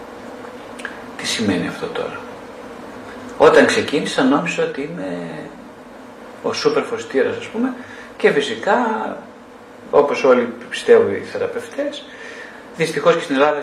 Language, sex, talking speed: Greek, male, 110 wpm